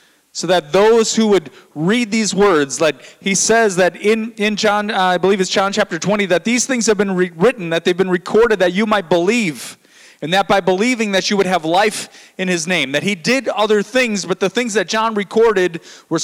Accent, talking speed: American, 225 wpm